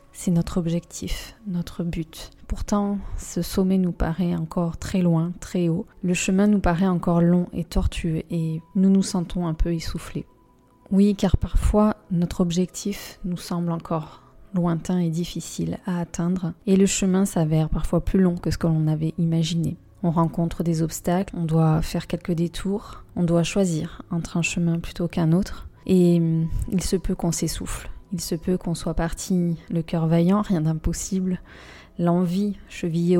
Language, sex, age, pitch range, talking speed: French, female, 20-39, 165-185 Hz, 170 wpm